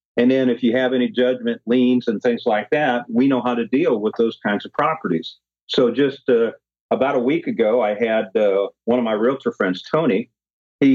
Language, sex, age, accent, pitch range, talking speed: English, male, 50-69, American, 105-130 Hz, 215 wpm